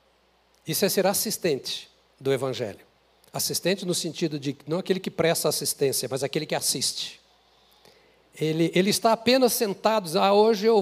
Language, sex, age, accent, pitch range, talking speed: Portuguese, male, 60-79, Brazilian, 175-230 Hz, 155 wpm